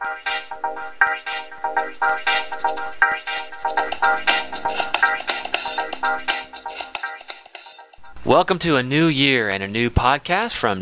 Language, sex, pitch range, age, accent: English, male, 105-130 Hz, 30-49, American